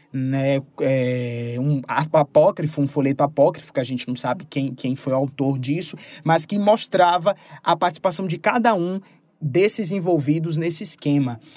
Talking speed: 160 wpm